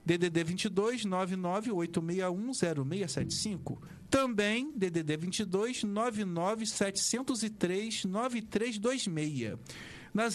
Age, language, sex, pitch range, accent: 40-59, Portuguese, male, 165-220 Hz, Brazilian